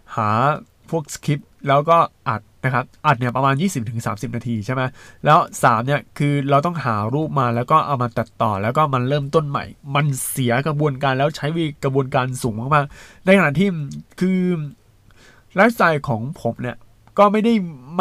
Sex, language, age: male, Thai, 20-39